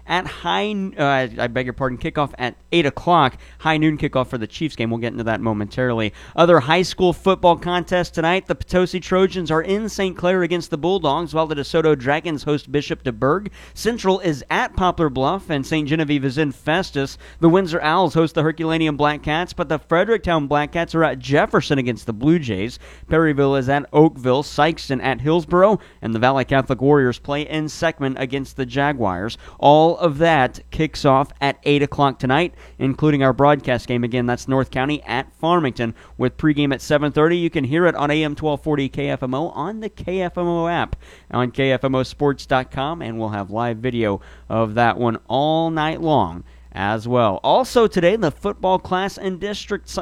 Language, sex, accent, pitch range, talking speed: English, male, American, 130-165 Hz, 180 wpm